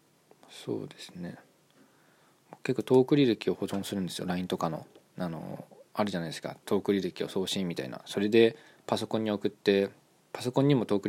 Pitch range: 95-110 Hz